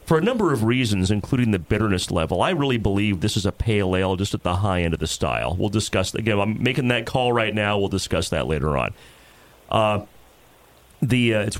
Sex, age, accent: male, 30-49, American